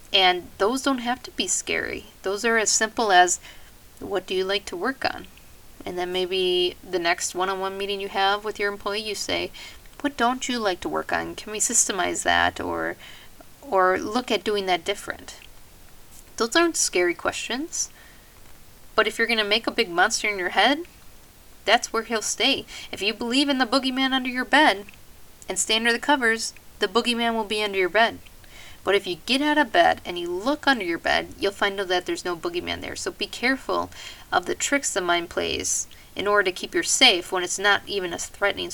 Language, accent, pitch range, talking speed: English, American, 185-260 Hz, 205 wpm